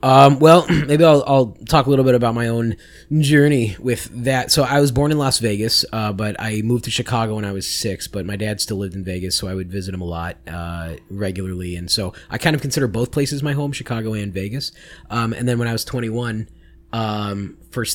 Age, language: 20-39, English